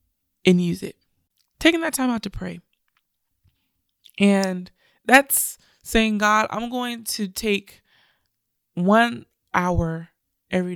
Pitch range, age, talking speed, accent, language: 175-205 Hz, 20-39, 110 wpm, American, English